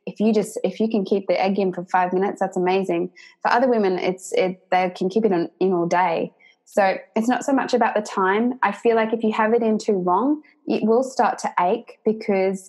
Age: 20-39